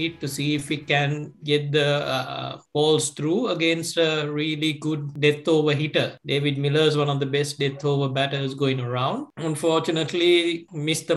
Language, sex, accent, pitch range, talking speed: English, male, Indian, 135-155 Hz, 160 wpm